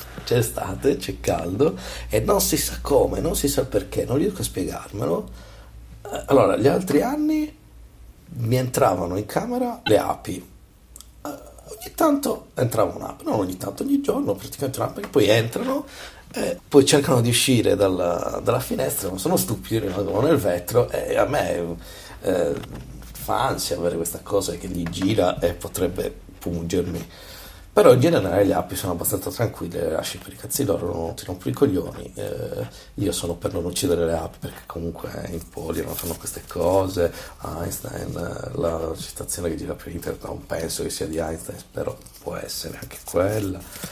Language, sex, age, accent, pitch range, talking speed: Italian, male, 50-69, native, 85-100 Hz, 170 wpm